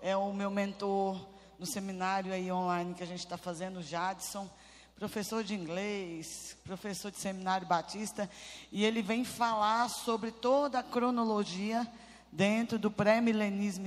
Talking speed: 140 wpm